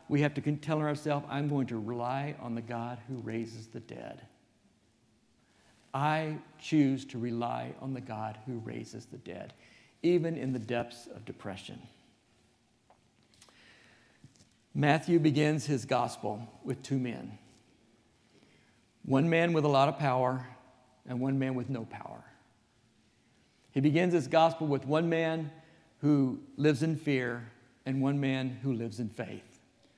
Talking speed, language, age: 140 wpm, English, 50-69